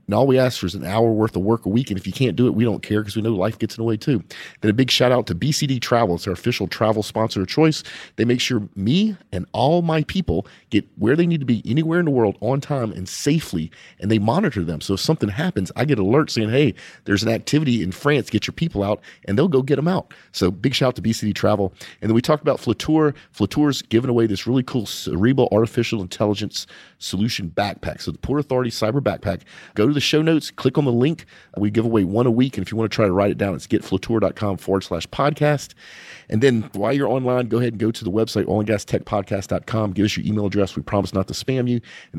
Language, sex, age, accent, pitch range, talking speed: English, male, 40-59, American, 100-130 Hz, 255 wpm